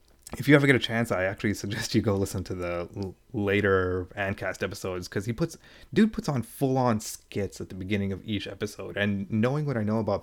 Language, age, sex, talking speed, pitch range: English, 20-39, male, 225 wpm, 95-110 Hz